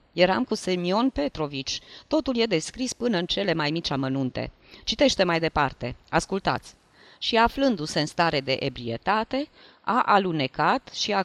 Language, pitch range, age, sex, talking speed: Romanian, 150-200 Hz, 20-39, female, 145 wpm